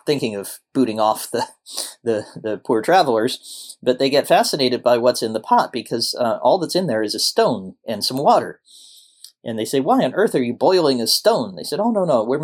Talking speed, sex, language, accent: 225 wpm, male, English, American